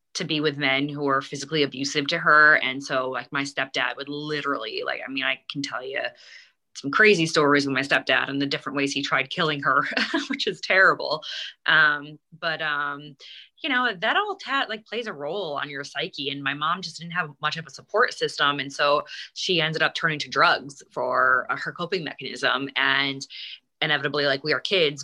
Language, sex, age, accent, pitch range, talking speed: English, female, 20-39, American, 140-160 Hz, 205 wpm